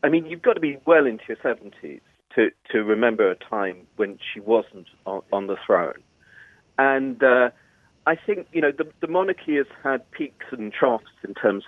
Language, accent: English, British